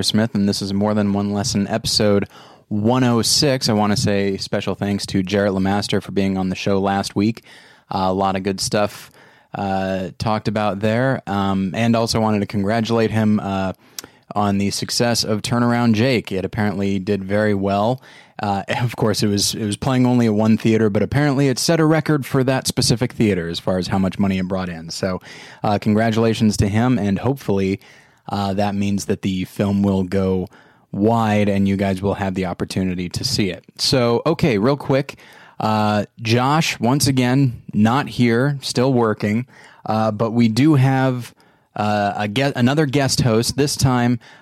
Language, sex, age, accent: English, male, 20-39, American